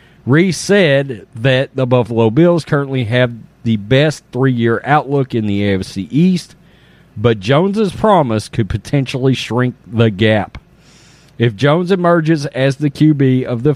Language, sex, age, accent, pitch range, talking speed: English, male, 40-59, American, 115-150 Hz, 145 wpm